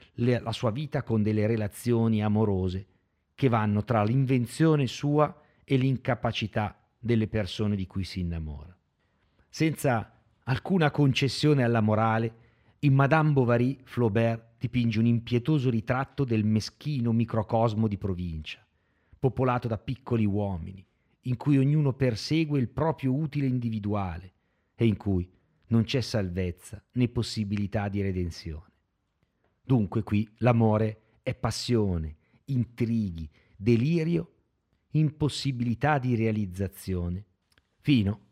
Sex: male